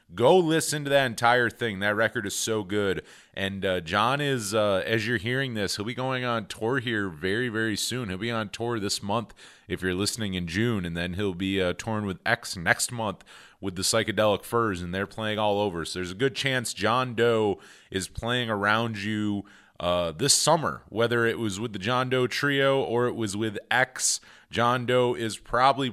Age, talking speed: 30-49, 210 wpm